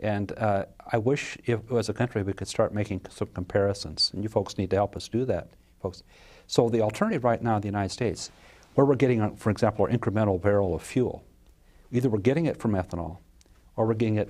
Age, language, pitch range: 50-69, English, 95-115 Hz